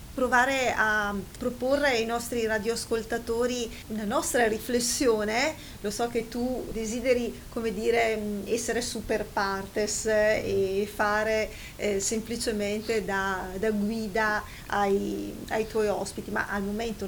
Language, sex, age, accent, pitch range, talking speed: Italian, female, 30-49, native, 205-235 Hz, 115 wpm